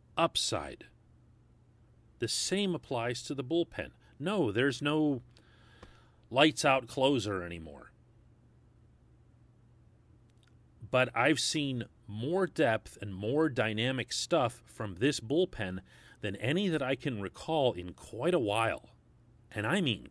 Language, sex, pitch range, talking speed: English, male, 105-130 Hz, 115 wpm